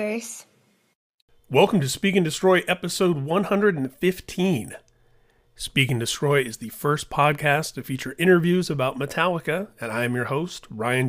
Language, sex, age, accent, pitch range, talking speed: English, male, 30-49, American, 120-160 Hz, 135 wpm